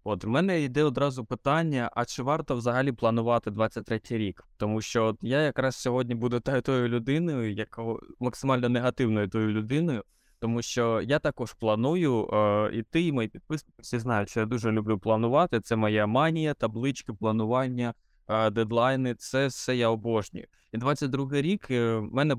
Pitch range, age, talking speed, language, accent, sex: 110-130 Hz, 20-39, 160 wpm, Ukrainian, native, male